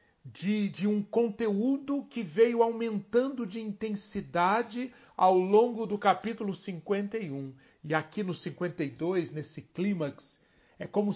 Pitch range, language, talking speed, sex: 140-215 Hz, Portuguese, 120 wpm, male